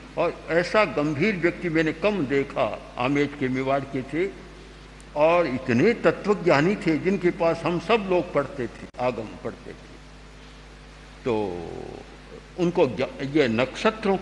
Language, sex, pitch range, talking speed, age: Hindi, male, 140-170 Hz, 125 wpm, 60-79